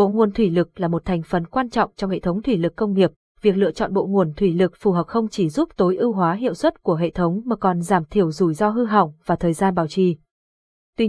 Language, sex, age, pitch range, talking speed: Vietnamese, female, 20-39, 175-225 Hz, 275 wpm